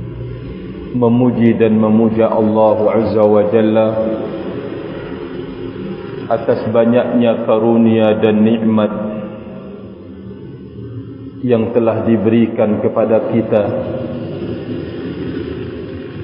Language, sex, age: Indonesian, male, 40-59